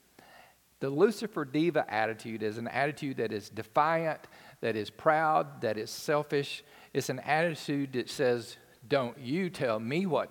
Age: 50-69